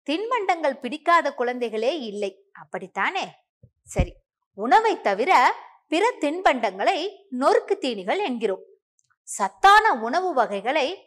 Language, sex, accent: Tamil, female, native